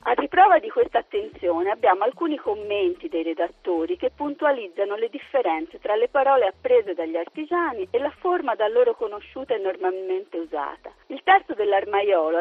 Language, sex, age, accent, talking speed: Italian, female, 50-69, native, 155 wpm